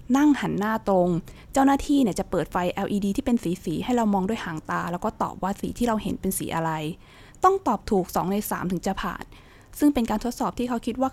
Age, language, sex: 20-39, Thai, female